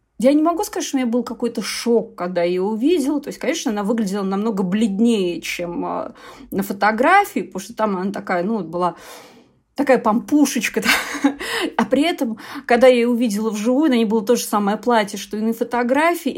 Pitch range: 215-255 Hz